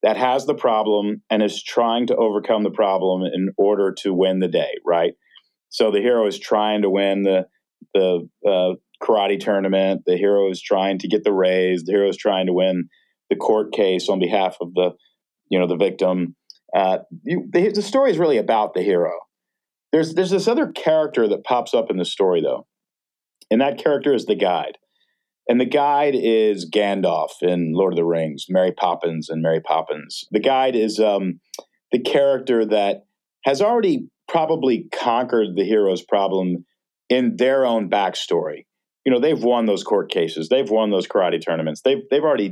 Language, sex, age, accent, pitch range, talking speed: English, male, 40-59, American, 95-145 Hz, 185 wpm